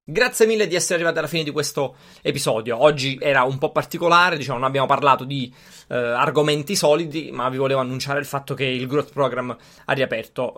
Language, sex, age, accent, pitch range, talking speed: Italian, male, 20-39, native, 135-160 Hz, 200 wpm